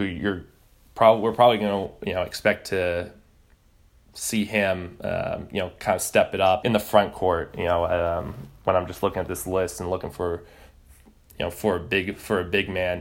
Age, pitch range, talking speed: 20-39, 95-115 Hz, 210 wpm